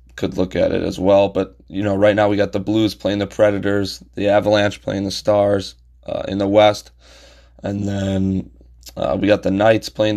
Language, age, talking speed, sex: English, 20-39, 205 wpm, male